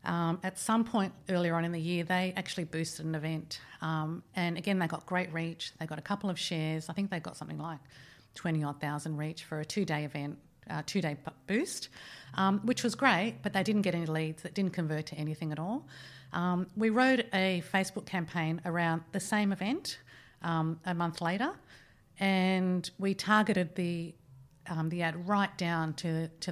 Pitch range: 160-195 Hz